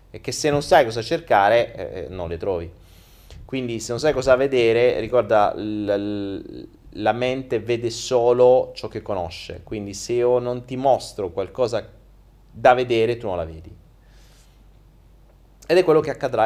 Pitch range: 100-125 Hz